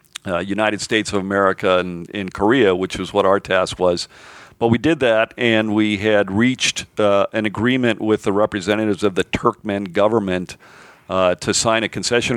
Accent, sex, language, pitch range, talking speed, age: American, male, English, 95-115 Hz, 180 wpm, 50-69